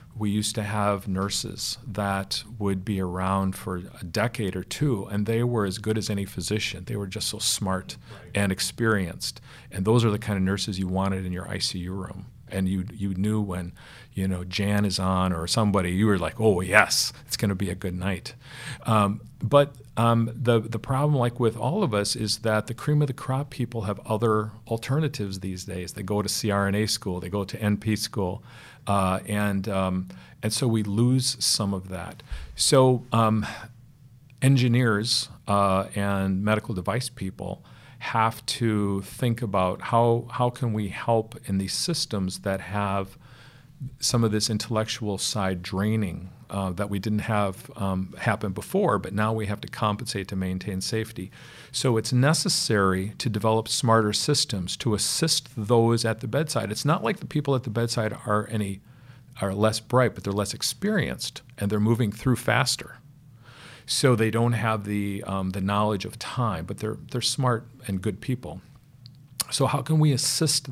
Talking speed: 180 wpm